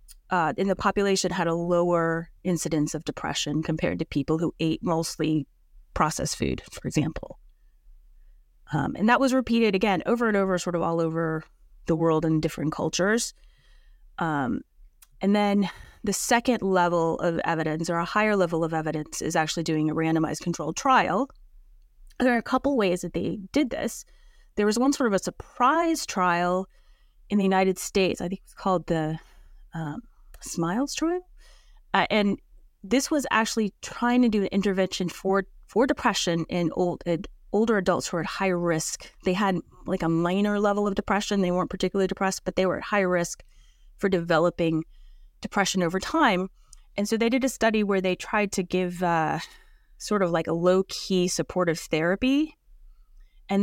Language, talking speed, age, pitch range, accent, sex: English, 175 wpm, 30-49, 170-215 Hz, American, female